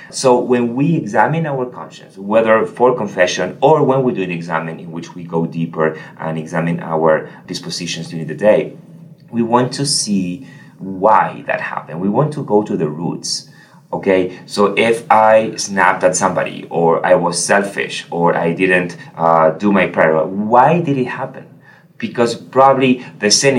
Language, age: English, 30-49